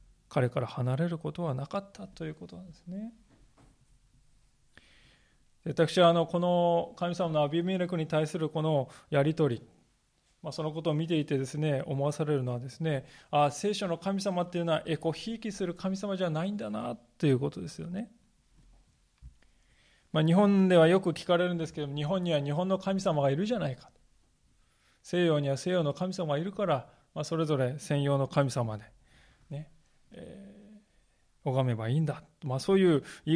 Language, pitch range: Japanese, 140-190 Hz